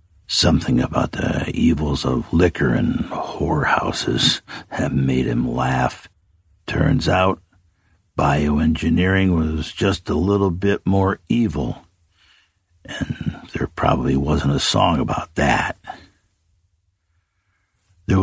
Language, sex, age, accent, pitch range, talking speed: English, male, 60-79, American, 80-90 Hz, 100 wpm